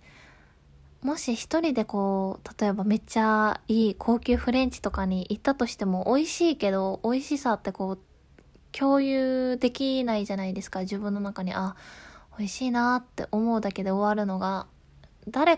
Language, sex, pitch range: Japanese, female, 190-240 Hz